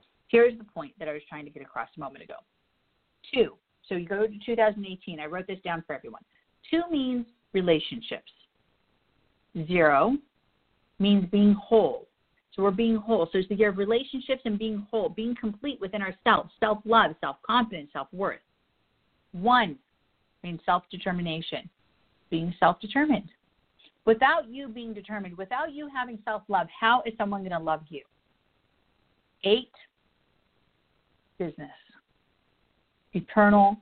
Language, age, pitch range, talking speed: English, 50-69, 170-225 Hz, 135 wpm